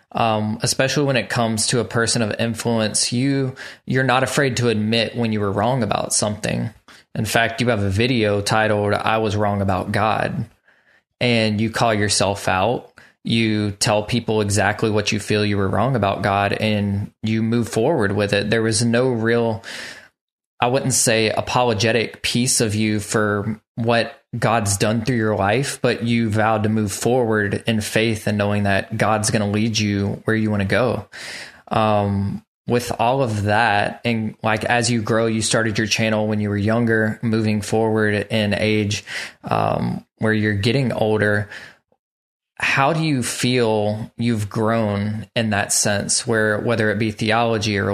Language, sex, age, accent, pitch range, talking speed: English, male, 20-39, American, 105-115 Hz, 170 wpm